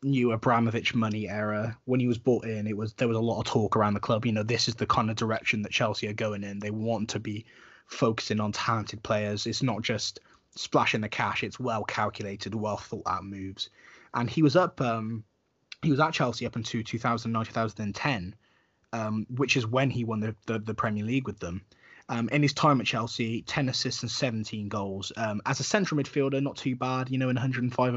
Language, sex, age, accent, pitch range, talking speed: English, male, 20-39, British, 105-130 Hz, 220 wpm